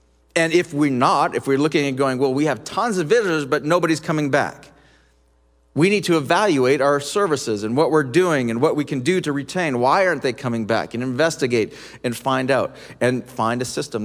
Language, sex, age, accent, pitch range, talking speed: English, male, 40-59, American, 115-160 Hz, 215 wpm